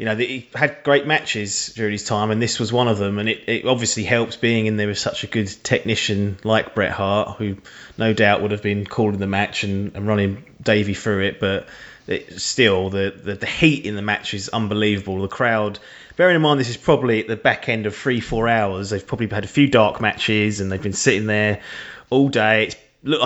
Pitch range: 100-115 Hz